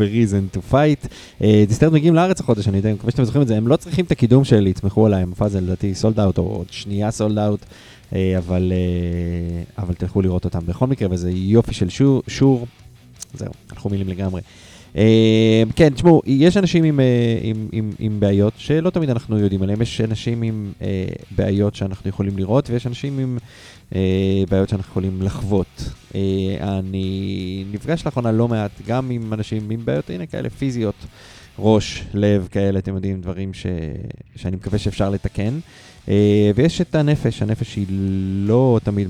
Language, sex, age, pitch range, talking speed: Hebrew, male, 20-39, 95-115 Hz, 165 wpm